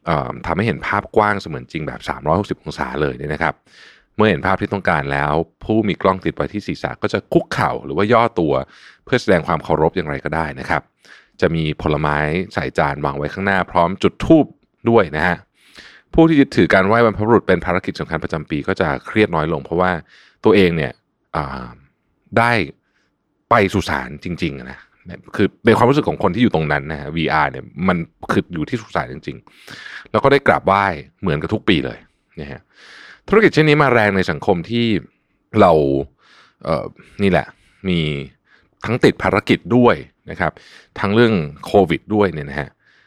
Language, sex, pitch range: Thai, male, 75-105 Hz